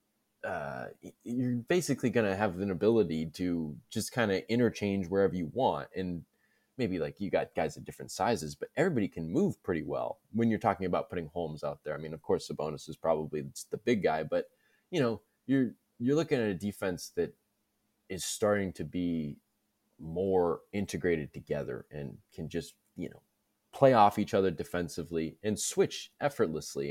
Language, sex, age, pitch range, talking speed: English, male, 20-39, 85-110 Hz, 180 wpm